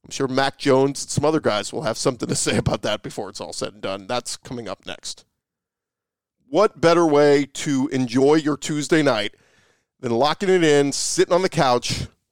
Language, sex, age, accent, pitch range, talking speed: English, male, 40-59, American, 130-160 Hz, 200 wpm